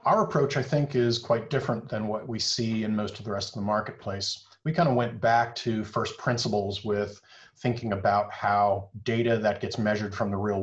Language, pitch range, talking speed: English, 105-130 Hz, 215 wpm